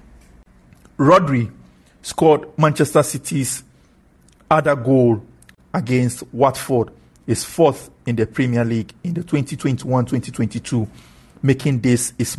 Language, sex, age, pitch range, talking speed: English, male, 50-69, 115-145 Hz, 95 wpm